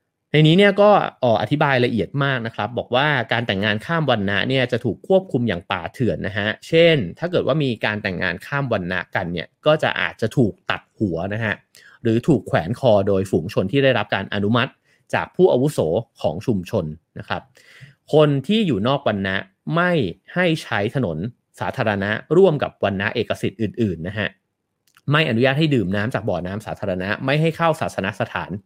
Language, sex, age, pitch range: English, male, 30-49, 105-150 Hz